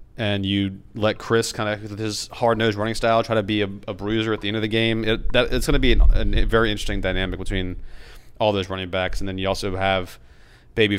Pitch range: 95-110 Hz